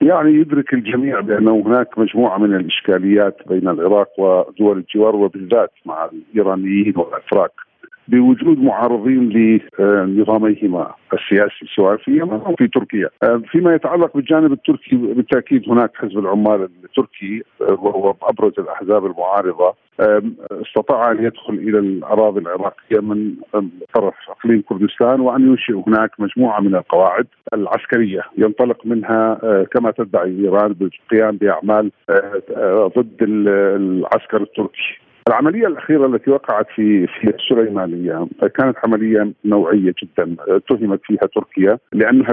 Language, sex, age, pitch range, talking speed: Arabic, male, 50-69, 105-130 Hz, 110 wpm